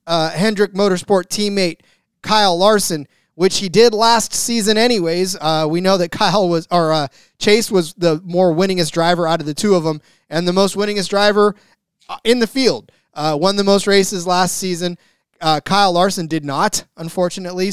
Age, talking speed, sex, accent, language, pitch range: 30-49, 180 wpm, male, American, English, 160-205 Hz